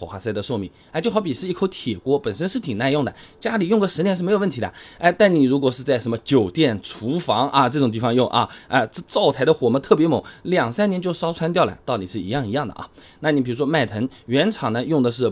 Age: 20-39